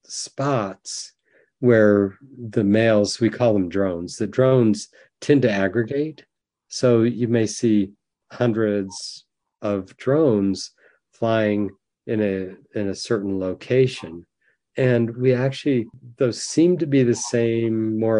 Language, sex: English, male